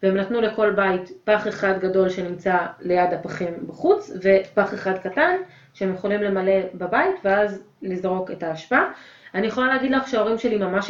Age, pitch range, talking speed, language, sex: 30-49, 200-275 Hz, 160 wpm, Hebrew, female